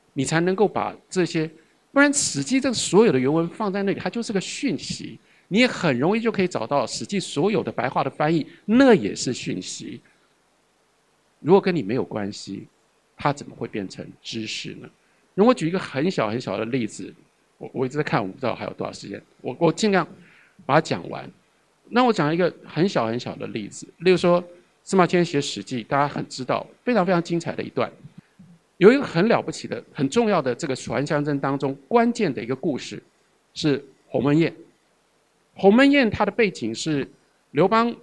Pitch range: 150-210 Hz